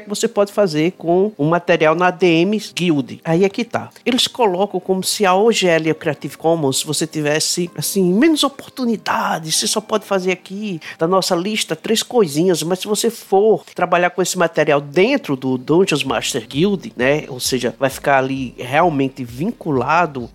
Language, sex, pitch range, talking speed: Portuguese, male, 145-200 Hz, 170 wpm